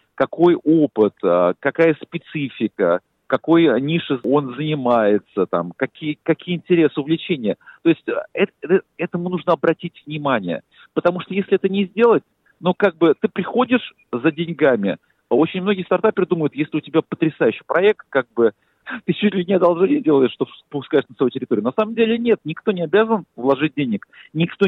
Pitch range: 130-180 Hz